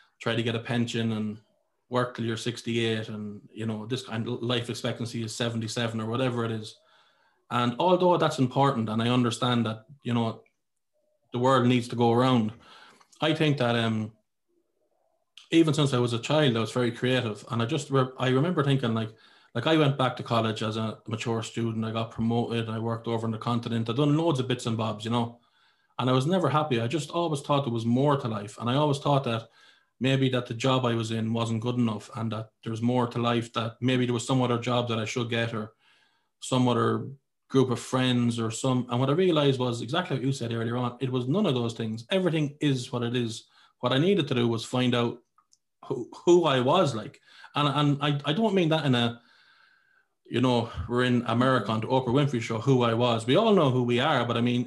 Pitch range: 115-135 Hz